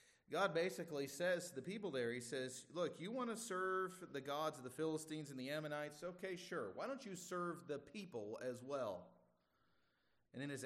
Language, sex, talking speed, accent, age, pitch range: English, male, 195 wpm, American, 30-49, 110-150 Hz